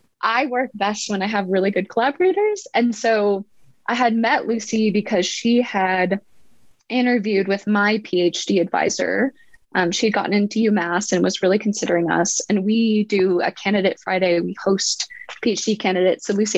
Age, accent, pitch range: 20-39, American, 195-235 Hz